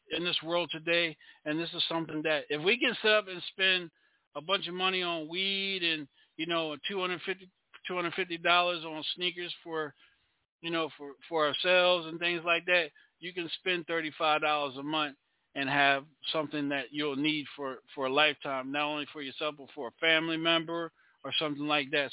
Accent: American